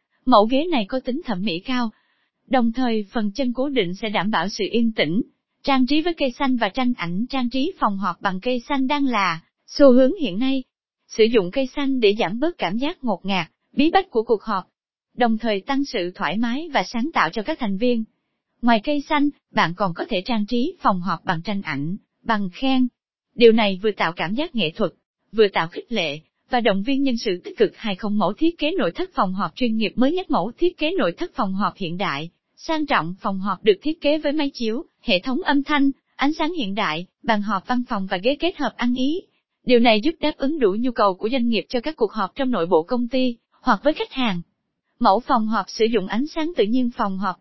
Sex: female